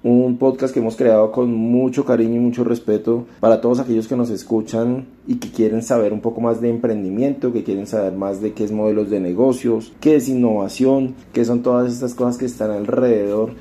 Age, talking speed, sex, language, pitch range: 30-49, 205 wpm, male, Spanish, 110-125 Hz